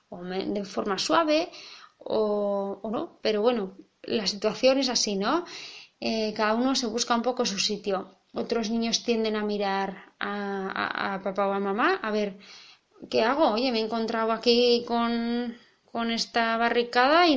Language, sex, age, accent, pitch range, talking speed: Spanish, female, 20-39, Spanish, 210-250 Hz, 170 wpm